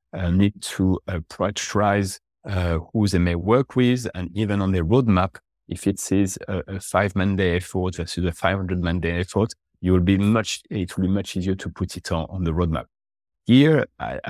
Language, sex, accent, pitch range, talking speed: English, male, French, 90-105 Hz, 170 wpm